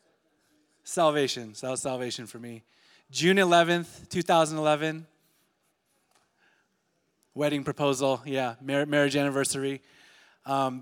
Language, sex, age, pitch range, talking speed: English, male, 20-39, 125-150 Hz, 90 wpm